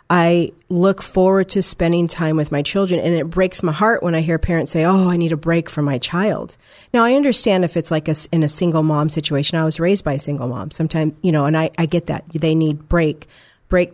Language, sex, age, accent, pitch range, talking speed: English, female, 40-59, American, 160-185 Hz, 250 wpm